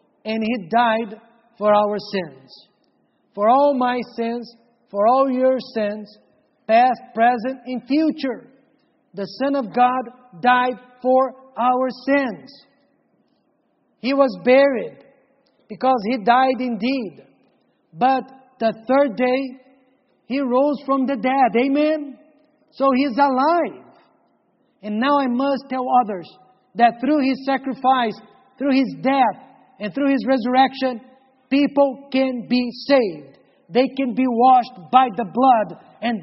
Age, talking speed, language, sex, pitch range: 50-69, 125 wpm, English, male, 225-265 Hz